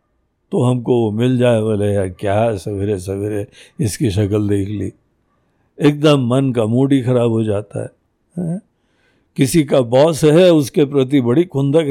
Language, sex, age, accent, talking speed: Hindi, male, 60-79, native, 150 wpm